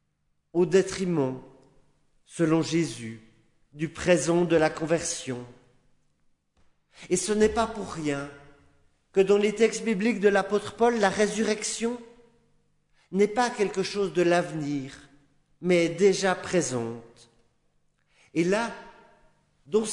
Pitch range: 145-205 Hz